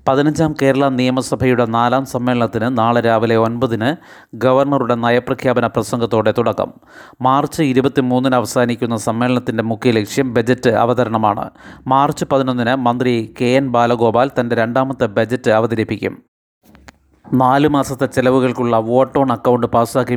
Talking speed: 105 wpm